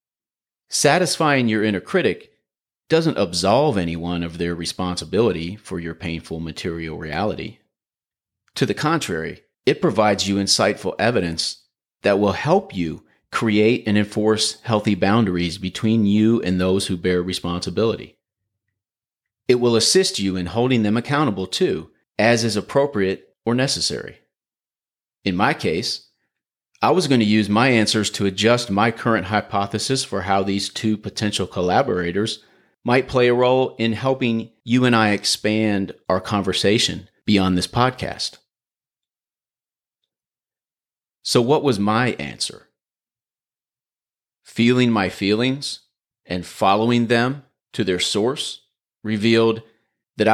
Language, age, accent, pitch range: English, 40-59, American, 95-115 Hz